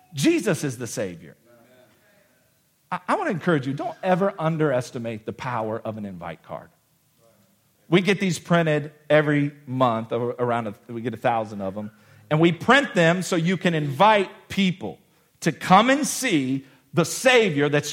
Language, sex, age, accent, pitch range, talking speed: English, male, 50-69, American, 155-230 Hz, 160 wpm